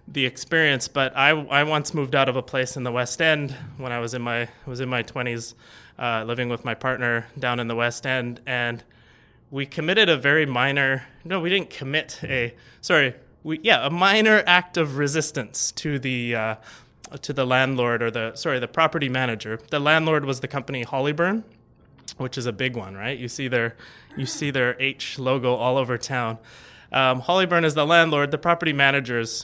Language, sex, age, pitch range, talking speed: English, male, 20-39, 120-150 Hz, 200 wpm